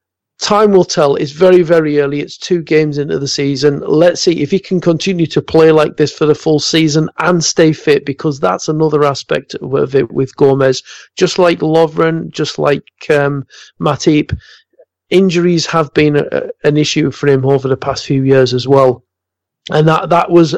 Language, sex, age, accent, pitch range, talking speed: English, male, 40-59, British, 145-170 Hz, 185 wpm